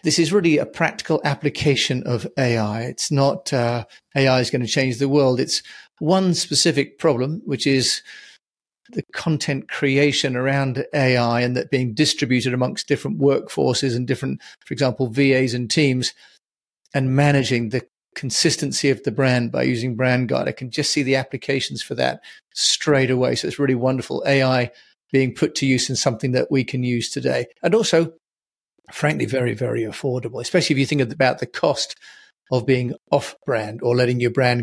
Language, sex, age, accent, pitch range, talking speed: English, male, 40-59, British, 125-155 Hz, 175 wpm